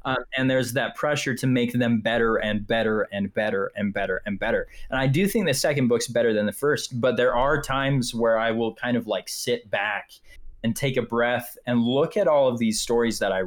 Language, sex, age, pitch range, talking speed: English, male, 20-39, 110-135 Hz, 235 wpm